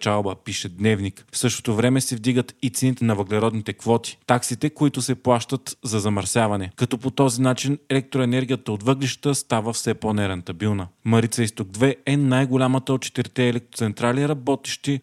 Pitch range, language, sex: 110-130 Hz, Bulgarian, male